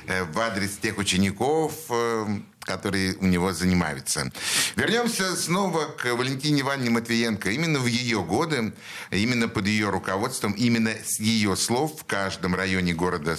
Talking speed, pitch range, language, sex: 135 wpm, 90-115 Hz, Russian, male